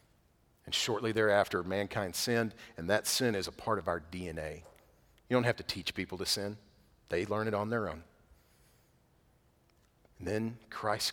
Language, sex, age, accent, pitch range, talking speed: English, male, 40-59, American, 100-125 Hz, 165 wpm